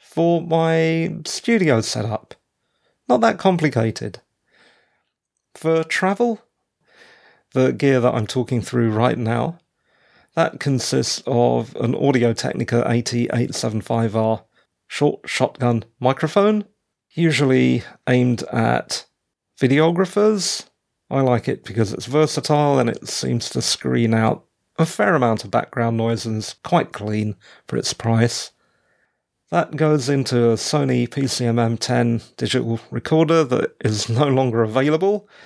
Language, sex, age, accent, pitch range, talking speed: English, male, 40-59, British, 115-160 Hz, 125 wpm